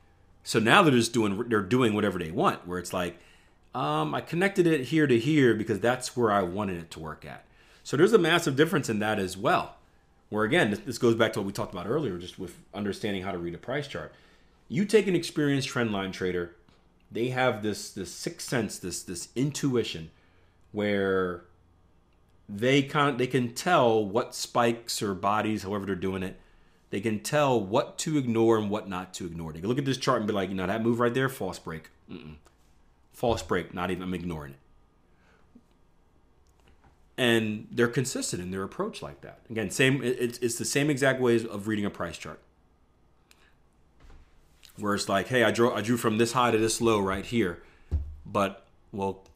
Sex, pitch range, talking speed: male, 90-120 Hz, 200 wpm